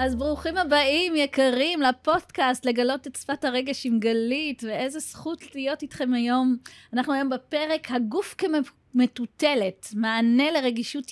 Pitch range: 240-280 Hz